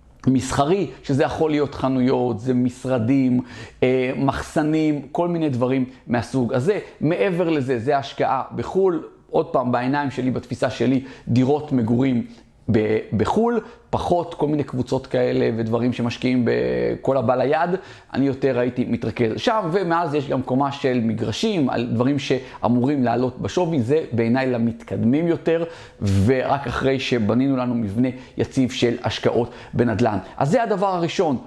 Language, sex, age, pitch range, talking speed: Hebrew, male, 40-59, 125-155 Hz, 135 wpm